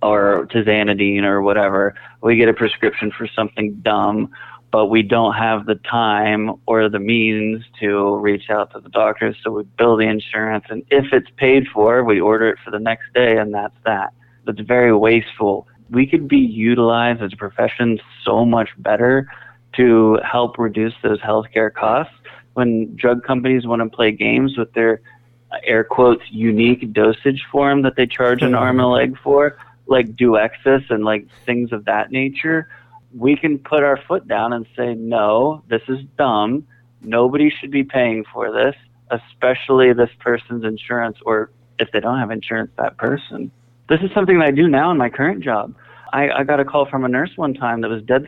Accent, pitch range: American, 110-130 Hz